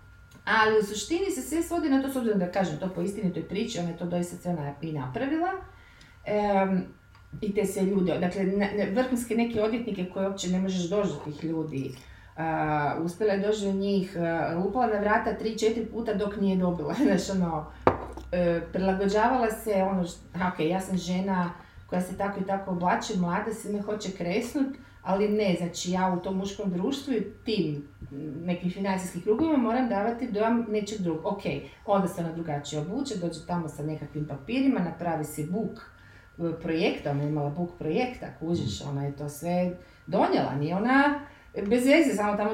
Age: 30-49